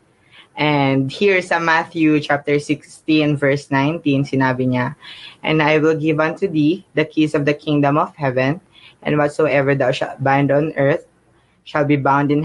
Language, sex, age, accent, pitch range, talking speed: Filipino, female, 20-39, native, 135-155 Hz, 160 wpm